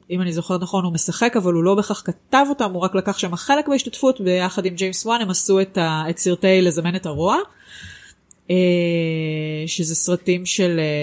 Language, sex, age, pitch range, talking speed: Hebrew, female, 30-49, 170-205 Hz, 185 wpm